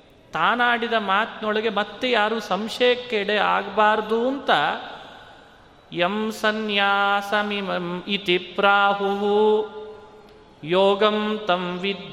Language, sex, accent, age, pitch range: Kannada, male, native, 30-49, 195-225 Hz